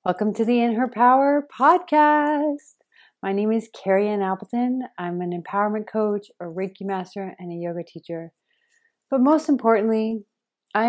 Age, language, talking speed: 30-49, English, 155 wpm